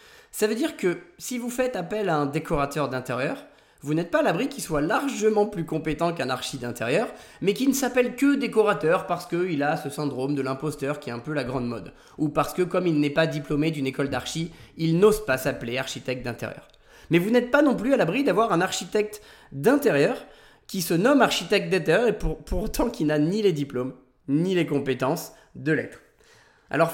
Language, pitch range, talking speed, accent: French, 150-215 Hz, 205 wpm, French